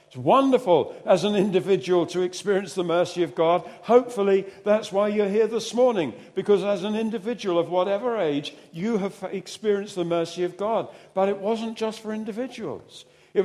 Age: 50-69